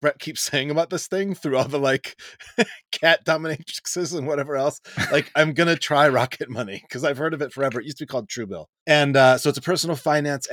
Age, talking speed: 30-49, 235 wpm